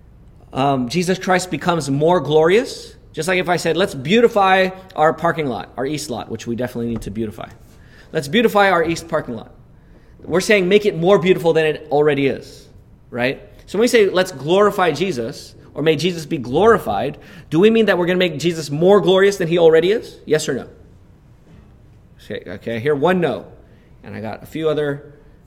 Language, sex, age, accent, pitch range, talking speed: English, male, 30-49, American, 135-185 Hz, 195 wpm